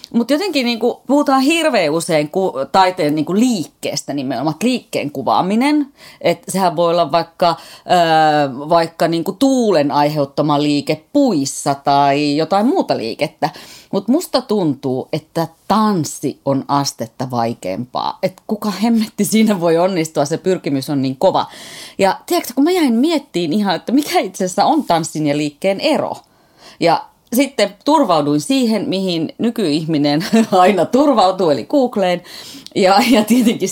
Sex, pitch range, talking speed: female, 150-235 Hz, 135 wpm